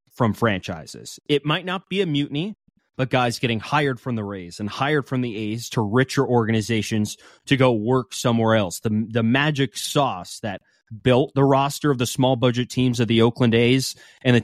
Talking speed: 195 wpm